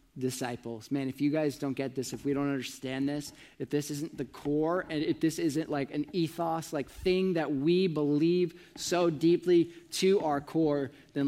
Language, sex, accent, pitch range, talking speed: English, male, American, 135-185 Hz, 190 wpm